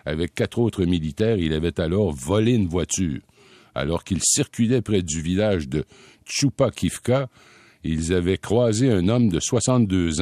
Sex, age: male, 60-79